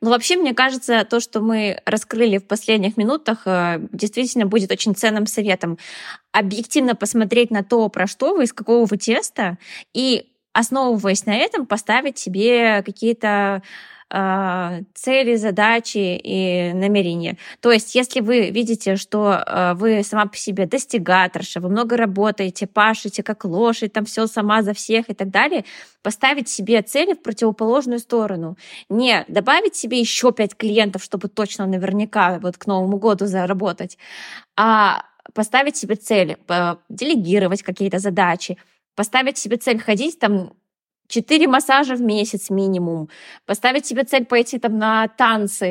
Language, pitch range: Russian, 200-245 Hz